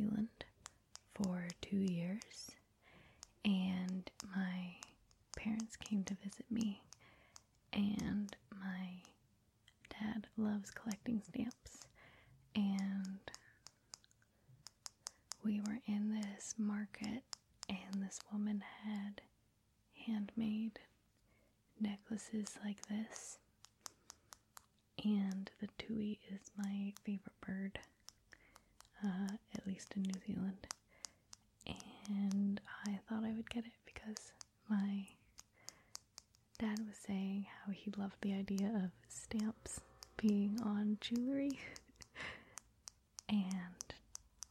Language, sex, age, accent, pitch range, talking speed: English, female, 20-39, American, 190-220 Hz, 90 wpm